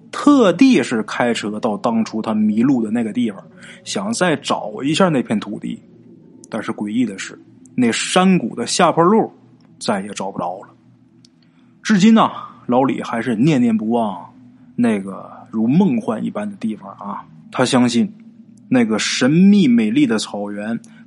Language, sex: Chinese, male